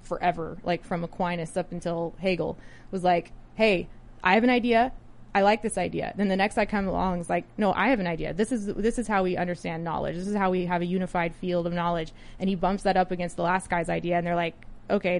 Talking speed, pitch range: 250 wpm, 175-210 Hz